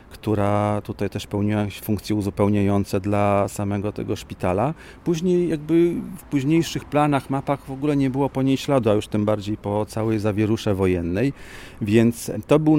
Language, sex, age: Polish, male, 40-59